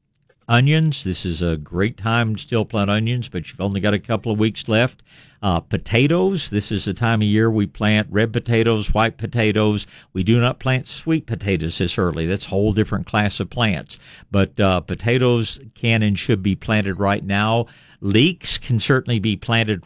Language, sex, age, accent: English, male, 60-79, American